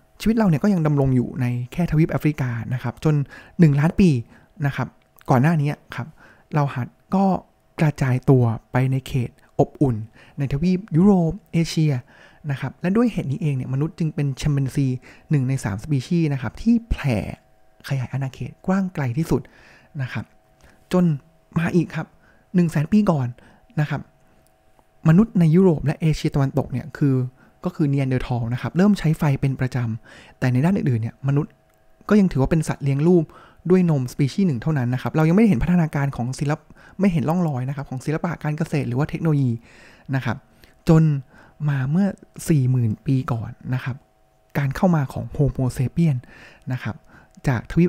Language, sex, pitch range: Thai, male, 130-165 Hz